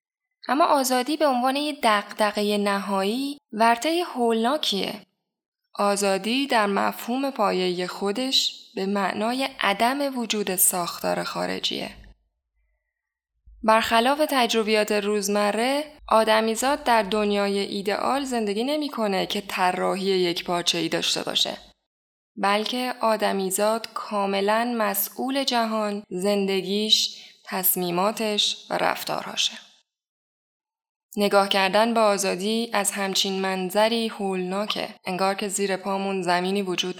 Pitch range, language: 190-230 Hz, Persian